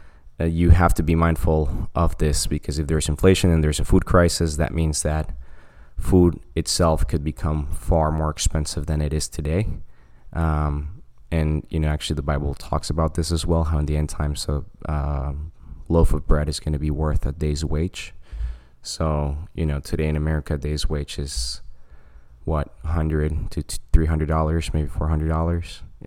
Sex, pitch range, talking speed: male, 70-80 Hz, 175 wpm